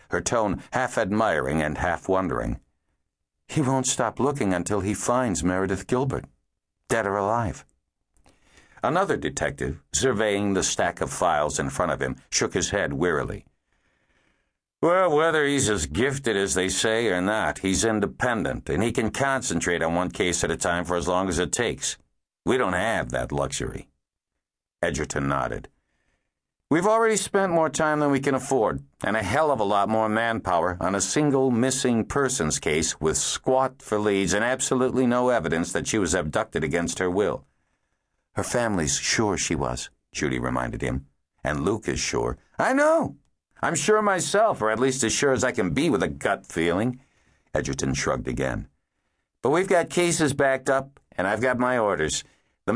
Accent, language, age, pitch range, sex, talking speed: American, English, 60-79, 90-135 Hz, male, 170 wpm